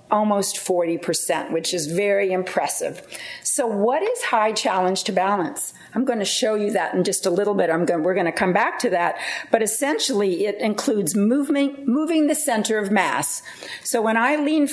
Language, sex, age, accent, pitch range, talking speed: English, female, 50-69, American, 175-235 Hz, 195 wpm